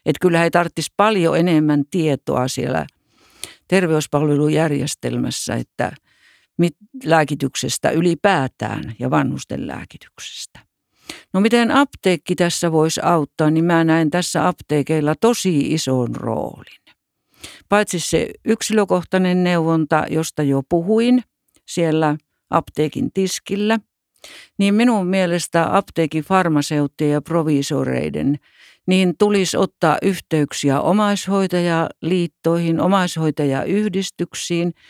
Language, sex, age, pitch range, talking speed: Finnish, female, 60-79, 150-190 Hz, 90 wpm